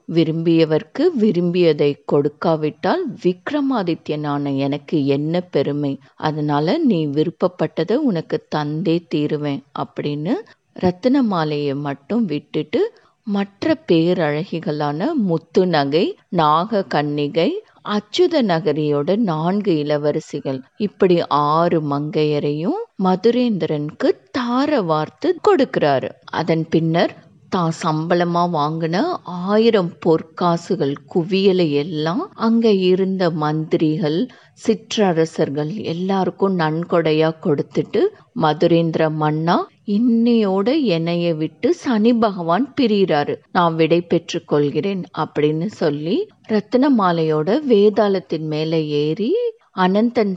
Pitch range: 155-215 Hz